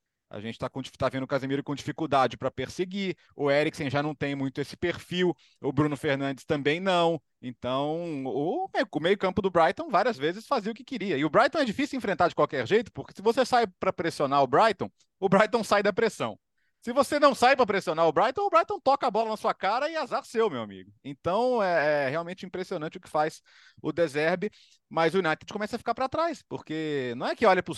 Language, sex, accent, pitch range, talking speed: Portuguese, male, Brazilian, 130-190 Hz, 220 wpm